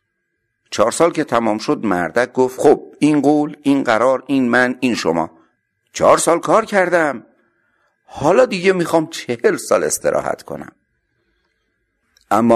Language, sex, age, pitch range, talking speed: Persian, male, 60-79, 95-130 Hz, 135 wpm